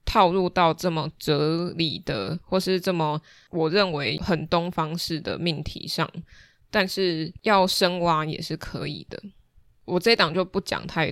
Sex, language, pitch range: female, Chinese, 160-185 Hz